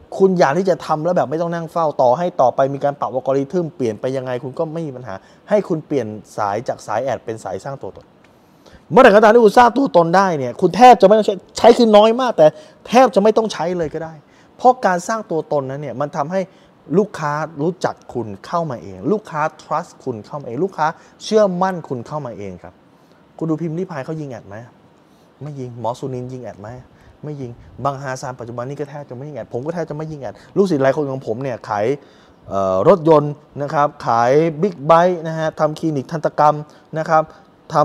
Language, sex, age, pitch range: Thai, male, 20-39, 130-180 Hz